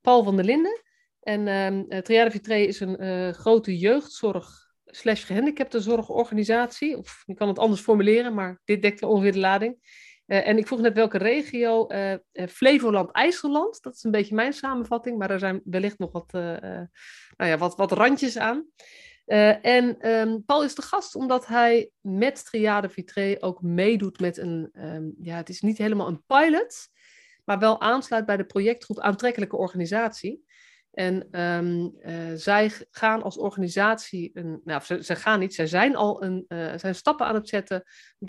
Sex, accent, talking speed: female, Dutch, 170 wpm